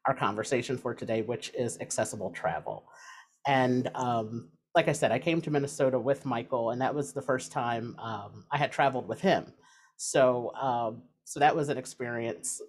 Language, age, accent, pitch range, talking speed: English, 40-59, American, 115-145 Hz, 180 wpm